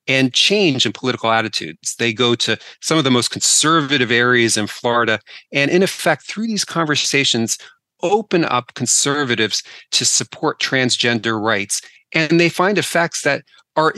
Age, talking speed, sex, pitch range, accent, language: 40-59, 150 wpm, male, 120-160 Hz, American, English